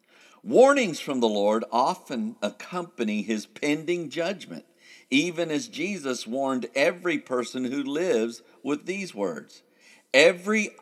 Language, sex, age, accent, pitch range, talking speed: English, male, 50-69, American, 105-165 Hz, 115 wpm